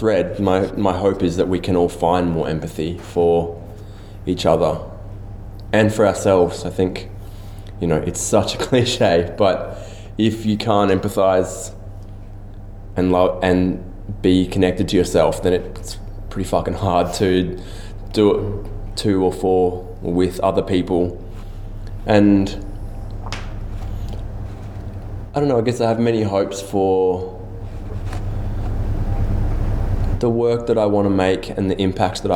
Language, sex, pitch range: English, male, 95-100 Hz